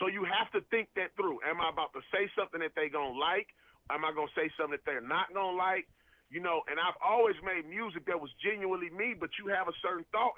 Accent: American